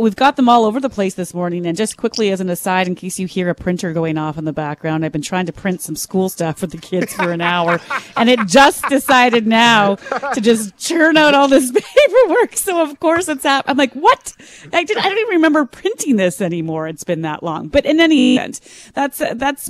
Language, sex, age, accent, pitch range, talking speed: English, female, 30-49, American, 170-220 Hz, 245 wpm